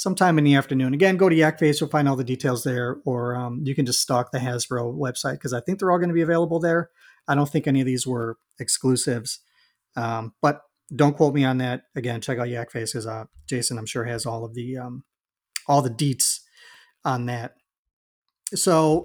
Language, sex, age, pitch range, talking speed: English, male, 40-59, 125-160 Hz, 215 wpm